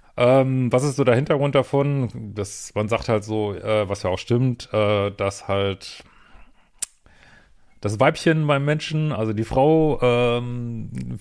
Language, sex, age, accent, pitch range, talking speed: German, male, 40-59, German, 105-130 Hz, 145 wpm